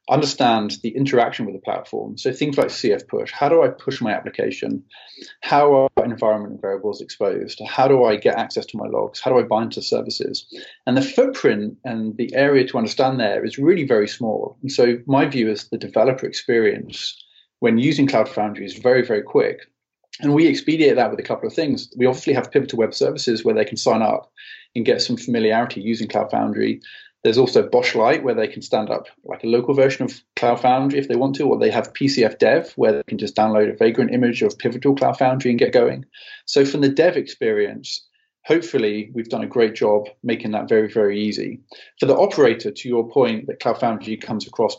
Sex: male